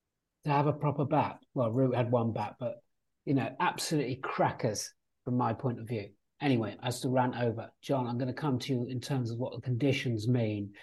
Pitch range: 125-145 Hz